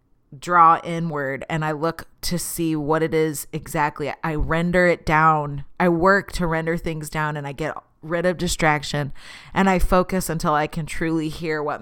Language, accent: English, American